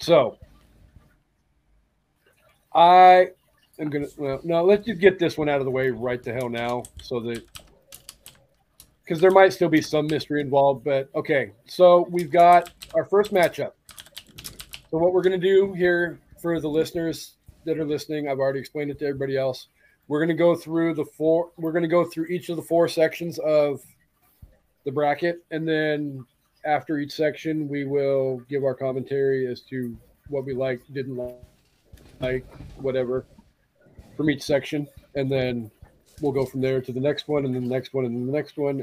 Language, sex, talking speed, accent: English, male, 180 wpm, American